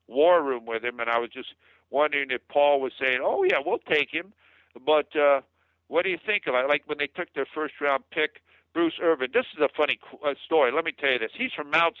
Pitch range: 120-155 Hz